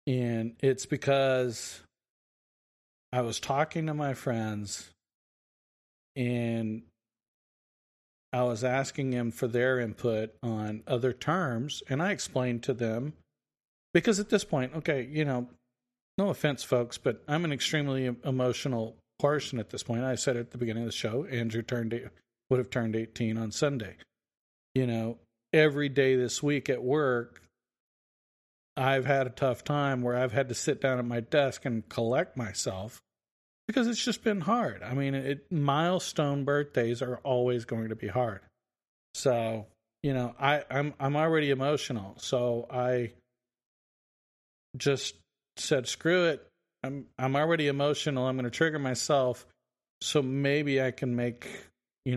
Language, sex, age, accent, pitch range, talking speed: English, male, 40-59, American, 115-140 Hz, 150 wpm